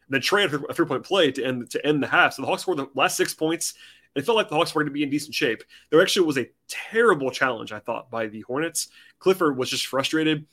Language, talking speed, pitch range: English, 280 wpm, 120-160 Hz